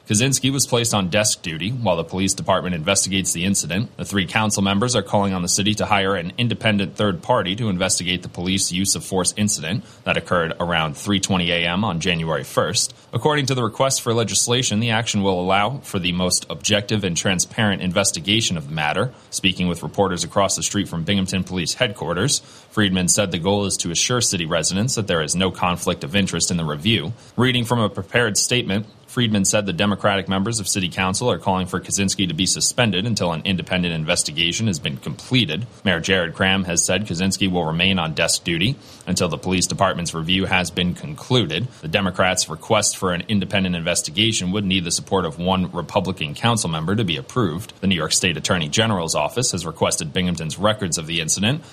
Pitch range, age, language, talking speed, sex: 90-110 Hz, 30-49, English, 200 wpm, male